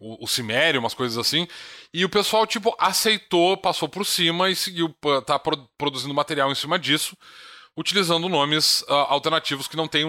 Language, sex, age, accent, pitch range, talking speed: Portuguese, male, 20-39, Brazilian, 120-165 Hz, 170 wpm